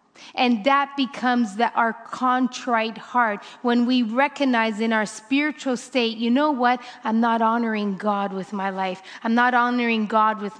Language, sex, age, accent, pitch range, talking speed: English, female, 30-49, American, 225-275 Hz, 165 wpm